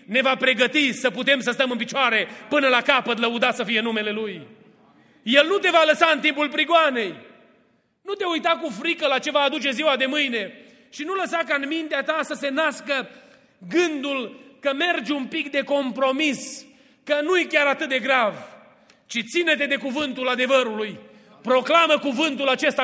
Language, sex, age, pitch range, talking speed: Romanian, male, 30-49, 265-320 Hz, 180 wpm